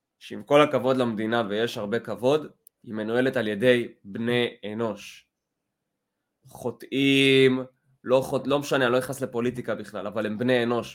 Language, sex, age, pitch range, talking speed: Hebrew, male, 20-39, 120-155 Hz, 150 wpm